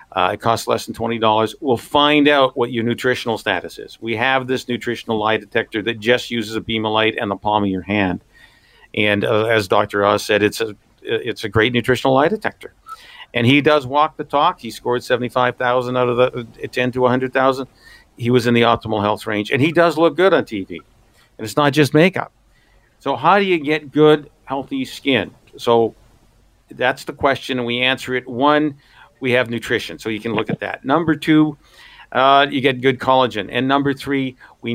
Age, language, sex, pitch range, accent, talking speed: 50-69, English, male, 115-140 Hz, American, 215 wpm